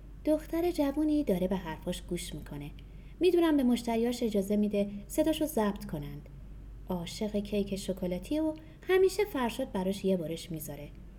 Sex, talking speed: female, 135 wpm